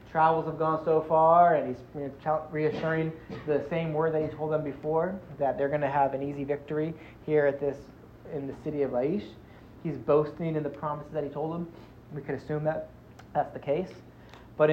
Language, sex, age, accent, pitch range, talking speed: English, male, 30-49, American, 140-165 Hz, 200 wpm